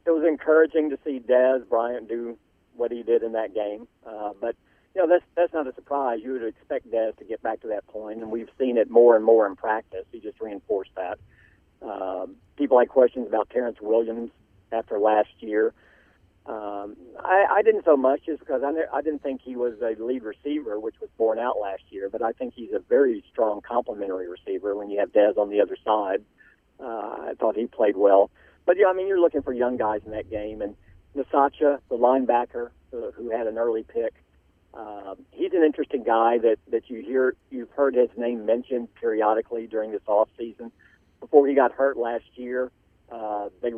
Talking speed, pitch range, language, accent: 205 wpm, 110-140 Hz, English, American